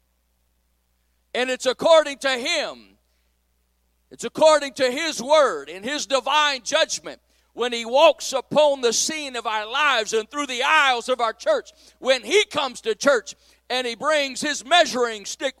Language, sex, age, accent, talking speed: English, male, 40-59, American, 160 wpm